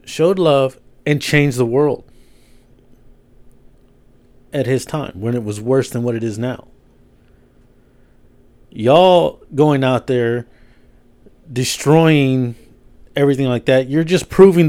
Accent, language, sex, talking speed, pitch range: American, English, male, 120 wpm, 125-150 Hz